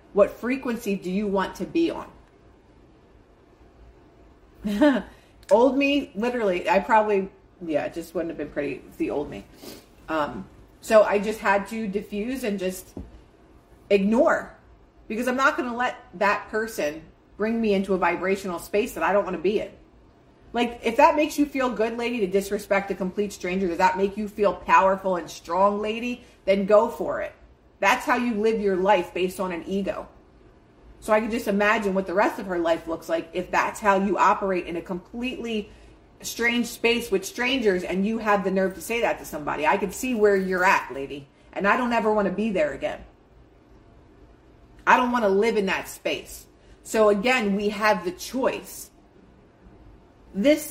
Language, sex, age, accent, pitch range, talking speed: English, female, 30-49, American, 190-240 Hz, 185 wpm